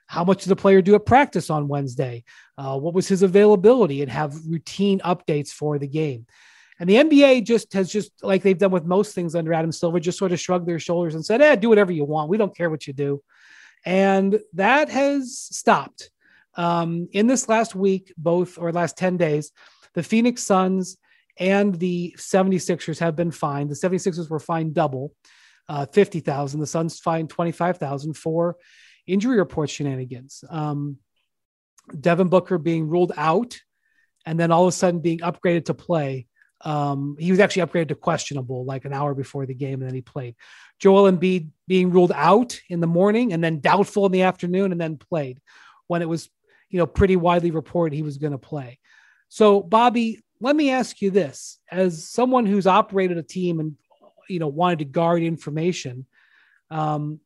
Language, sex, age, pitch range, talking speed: English, male, 30-49, 155-195 Hz, 185 wpm